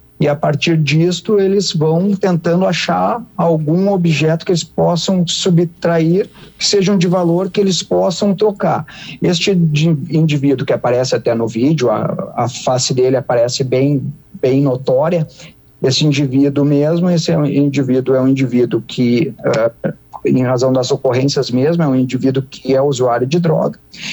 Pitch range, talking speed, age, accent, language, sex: 130-170 Hz, 150 wpm, 50-69, Brazilian, Portuguese, male